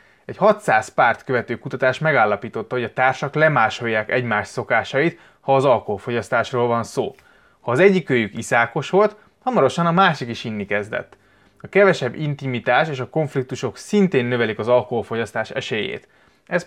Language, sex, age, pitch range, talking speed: Hungarian, male, 20-39, 115-150 Hz, 145 wpm